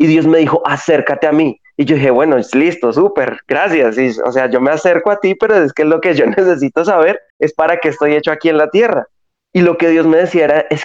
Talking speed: 260 wpm